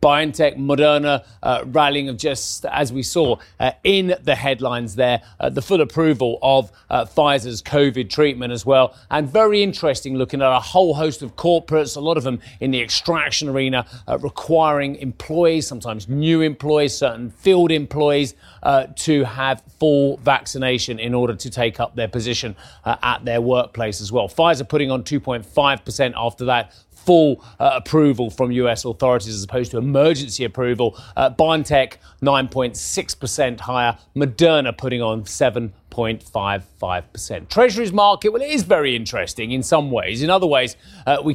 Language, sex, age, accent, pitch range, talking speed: English, male, 30-49, British, 120-150 Hz, 160 wpm